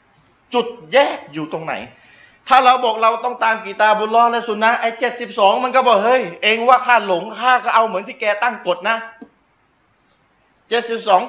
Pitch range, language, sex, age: 170-235 Hz, Thai, male, 30-49